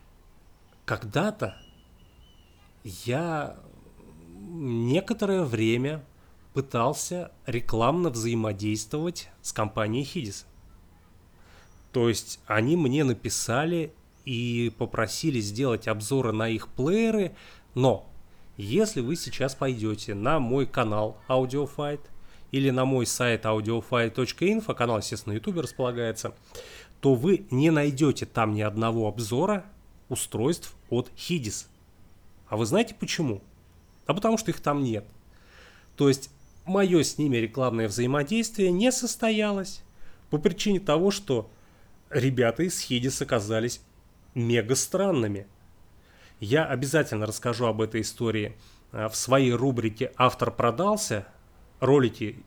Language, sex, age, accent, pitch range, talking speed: Russian, male, 30-49, native, 105-145 Hz, 105 wpm